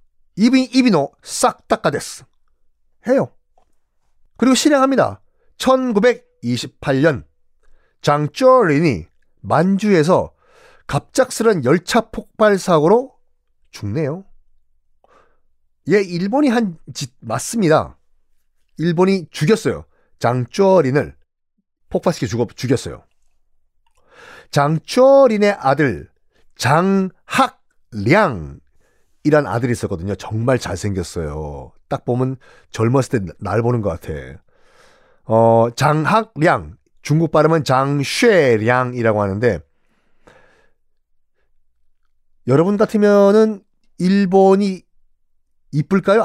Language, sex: Korean, male